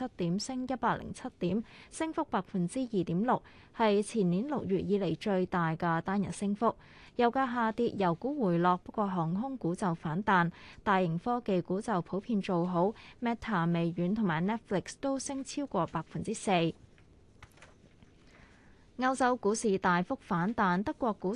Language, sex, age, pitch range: Chinese, female, 20-39, 180-235 Hz